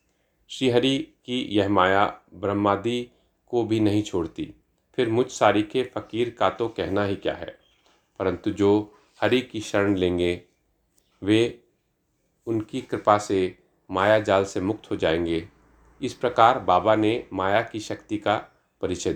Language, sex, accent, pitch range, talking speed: Hindi, male, native, 100-125 Hz, 145 wpm